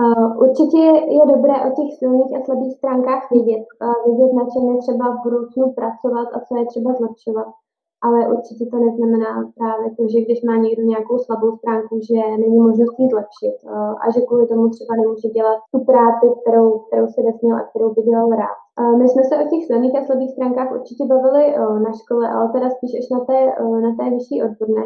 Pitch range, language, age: 225-245 Hz, Czech, 20-39